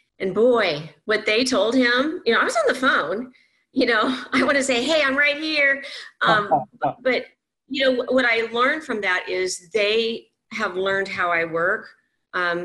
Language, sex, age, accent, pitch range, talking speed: English, female, 40-59, American, 180-230 Hz, 190 wpm